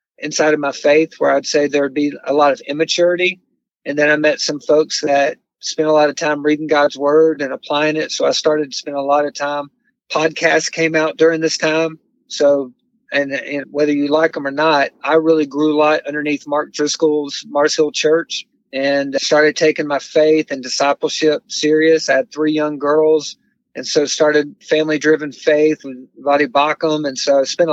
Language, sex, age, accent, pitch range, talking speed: English, male, 50-69, American, 145-160 Hz, 200 wpm